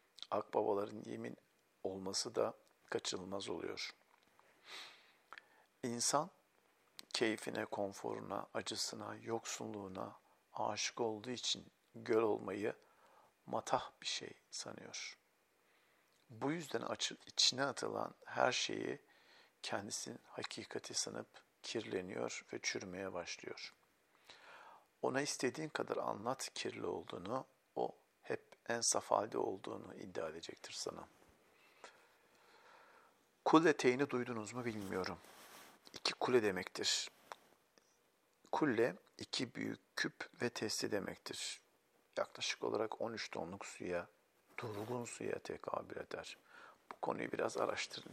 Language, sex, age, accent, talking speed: Turkish, male, 50-69, native, 95 wpm